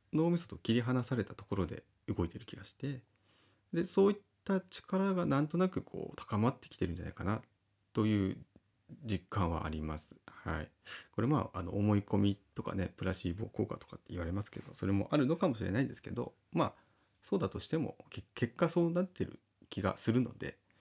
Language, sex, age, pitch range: Japanese, male, 30-49, 90-120 Hz